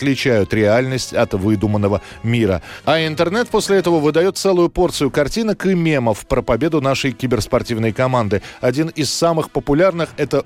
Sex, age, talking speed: male, 20-39, 145 wpm